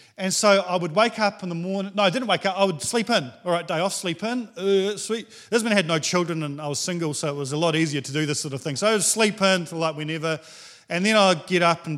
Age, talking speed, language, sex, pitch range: 40-59, 305 wpm, English, male, 150-200 Hz